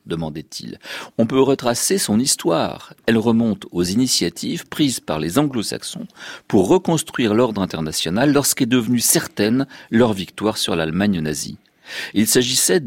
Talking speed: 140 wpm